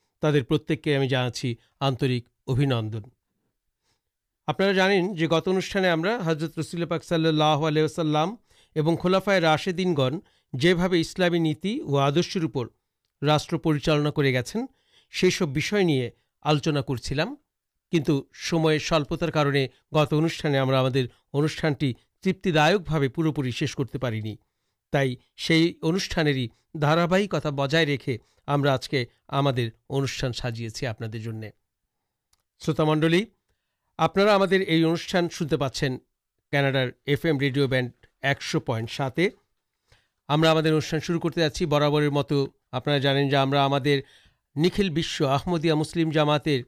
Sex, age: male, 60-79